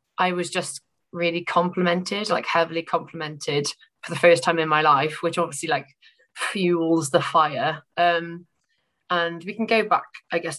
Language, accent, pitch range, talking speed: English, British, 155-180 Hz, 165 wpm